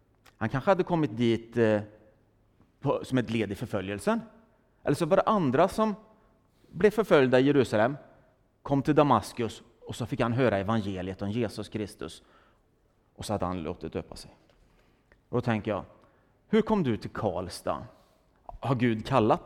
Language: Swedish